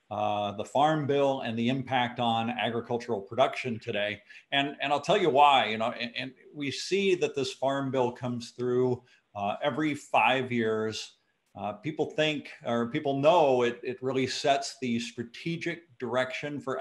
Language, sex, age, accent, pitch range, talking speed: English, male, 50-69, American, 115-140 Hz, 170 wpm